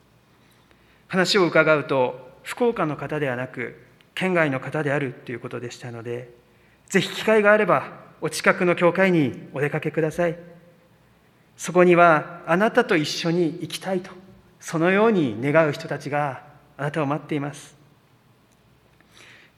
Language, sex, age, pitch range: Japanese, male, 40-59, 140-175 Hz